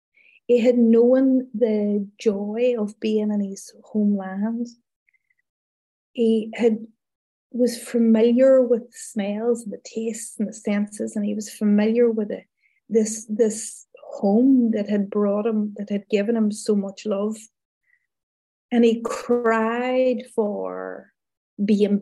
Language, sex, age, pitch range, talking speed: English, female, 30-49, 205-235 Hz, 130 wpm